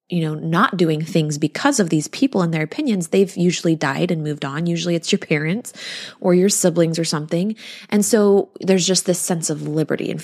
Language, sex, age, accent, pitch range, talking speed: English, female, 20-39, American, 170-225 Hz, 210 wpm